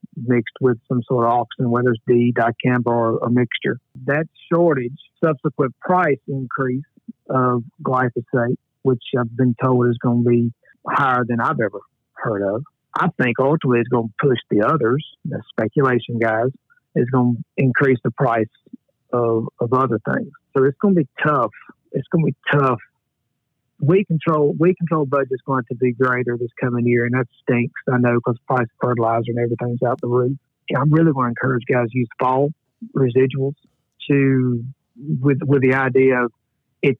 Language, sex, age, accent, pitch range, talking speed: English, male, 50-69, American, 120-140 Hz, 180 wpm